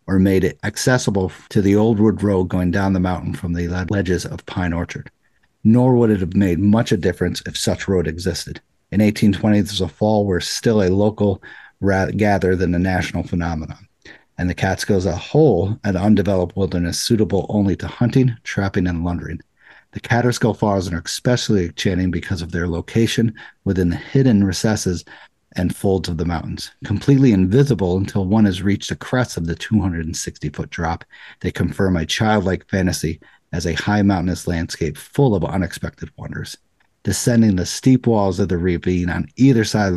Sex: male